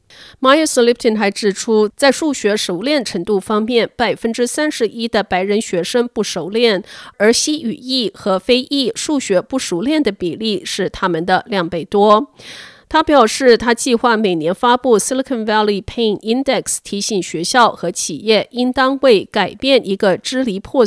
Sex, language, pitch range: female, Chinese, 195-255 Hz